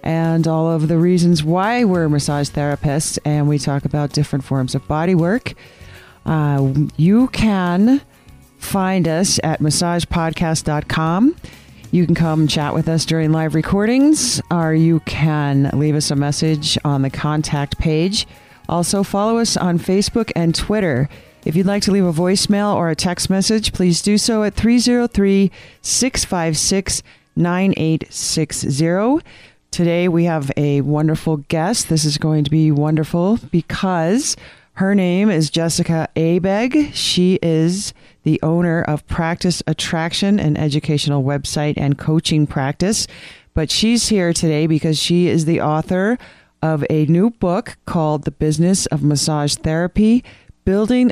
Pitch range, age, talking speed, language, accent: 150-185 Hz, 40-59, 140 wpm, English, American